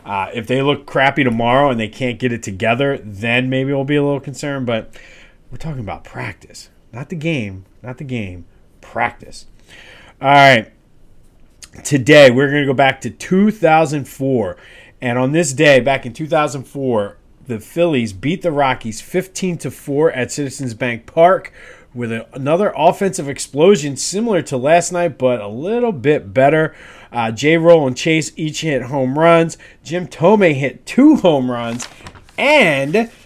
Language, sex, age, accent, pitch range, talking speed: English, male, 30-49, American, 125-165 Hz, 155 wpm